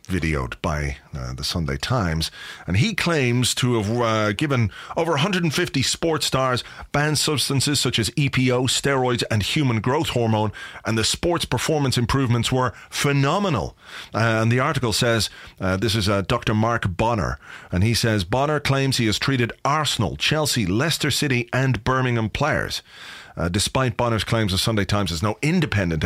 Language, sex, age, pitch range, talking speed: English, male, 30-49, 105-135 Hz, 165 wpm